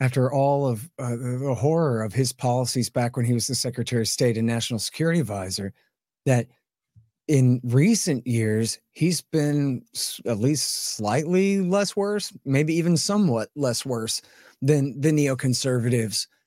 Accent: American